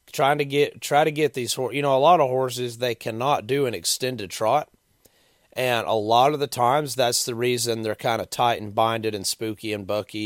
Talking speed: 230 wpm